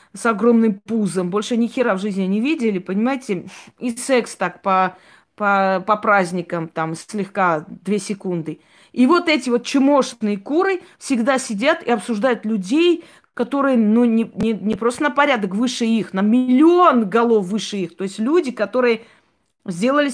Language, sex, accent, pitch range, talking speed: Russian, female, native, 210-275 Hz, 150 wpm